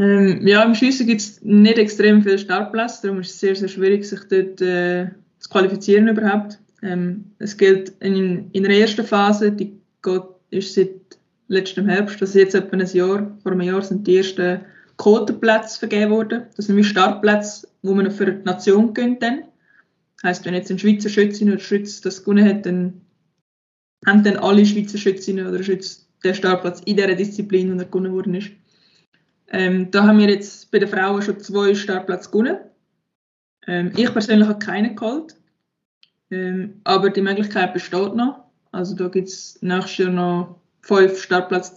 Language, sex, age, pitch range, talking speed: German, female, 20-39, 185-205 Hz, 175 wpm